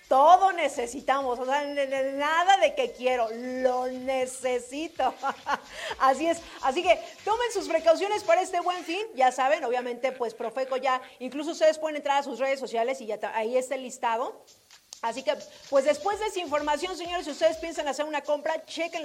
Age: 40-59